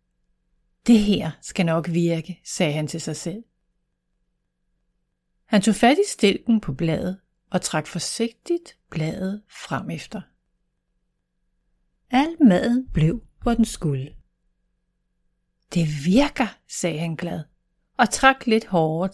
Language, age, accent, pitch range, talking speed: Danish, 60-79, native, 165-235 Hz, 120 wpm